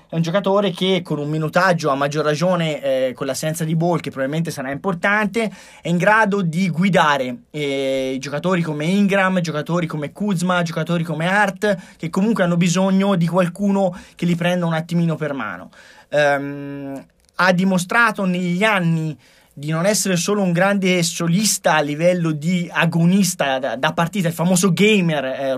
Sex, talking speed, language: male, 165 wpm, Italian